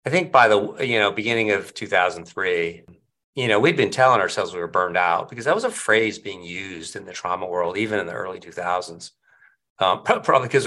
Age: 40-59